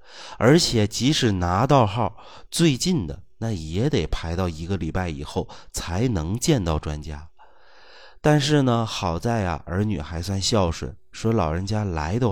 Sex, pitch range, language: male, 85-115 Hz, Chinese